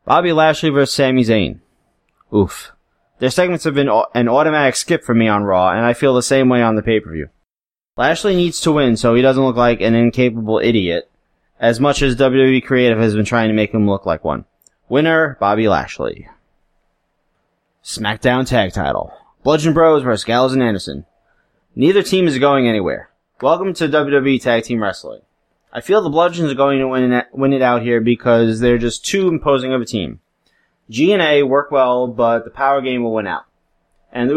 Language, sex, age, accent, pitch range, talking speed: English, male, 20-39, American, 110-140 Hz, 190 wpm